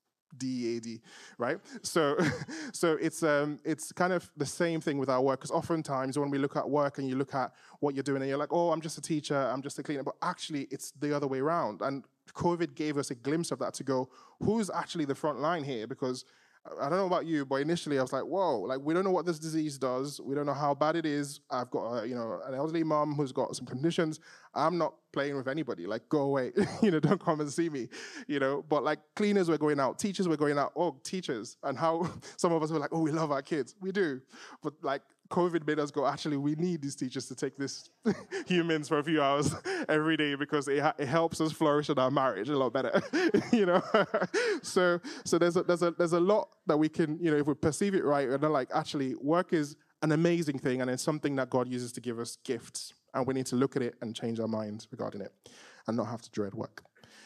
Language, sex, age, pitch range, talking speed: English, male, 20-39, 135-165 Hz, 250 wpm